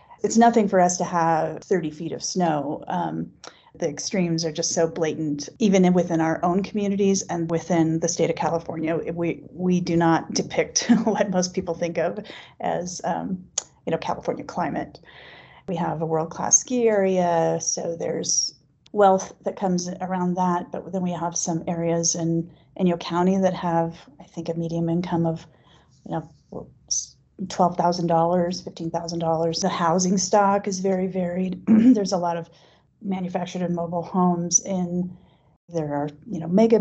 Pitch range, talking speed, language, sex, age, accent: 165-190 Hz, 170 wpm, English, female, 30-49, American